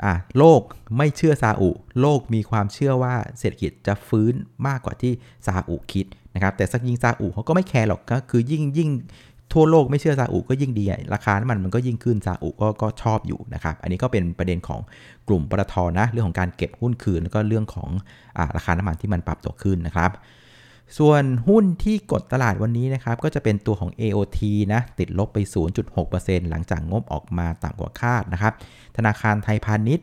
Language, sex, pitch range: Thai, male, 95-120 Hz